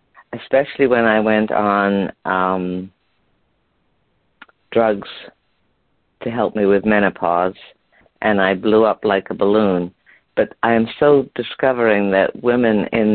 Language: English